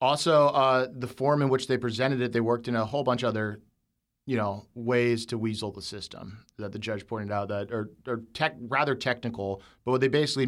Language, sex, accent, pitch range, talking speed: English, male, American, 110-125 Hz, 225 wpm